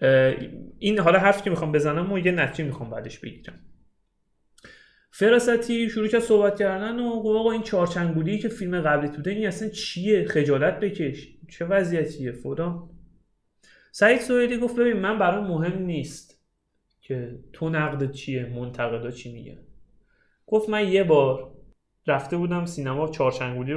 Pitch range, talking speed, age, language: 135-195 Hz, 140 wpm, 30-49, Persian